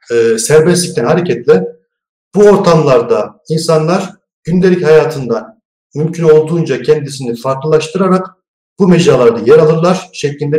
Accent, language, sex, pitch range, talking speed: native, Turkish, male, 145-190 Hz, 90 wpm